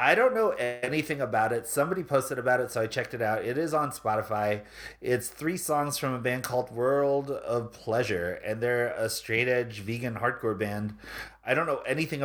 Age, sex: 30-49, male